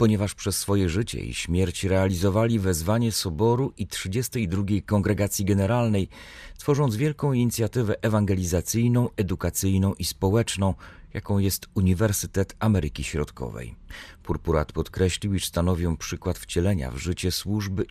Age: 40-59